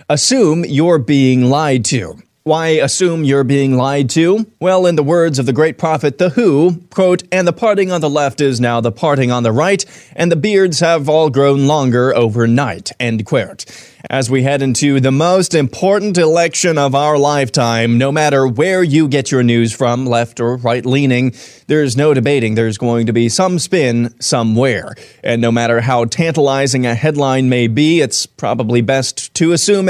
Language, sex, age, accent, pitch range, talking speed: English, male, 30-49, American, 125-155 Hz, 185 wpm